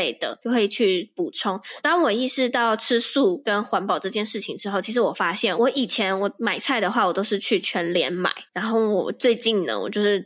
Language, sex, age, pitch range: Chinese, female, 10-29, 215-335 Hz